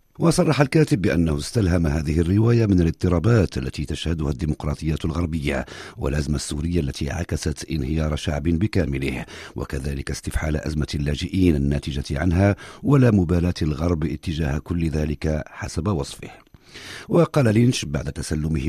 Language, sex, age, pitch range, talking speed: Arabic, male, 50-69, 75-95 Hz, 120 wpm